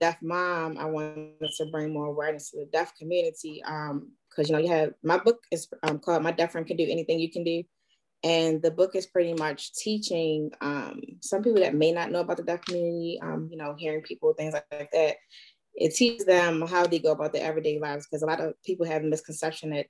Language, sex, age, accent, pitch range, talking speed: English, female, 20-39, American, 150-175 Hz, 230 wpm